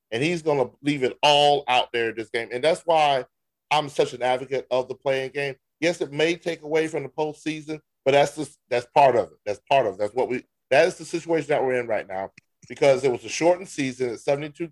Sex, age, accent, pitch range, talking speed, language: male, 30-49, American, 120-160 Hz, 245 wpm, English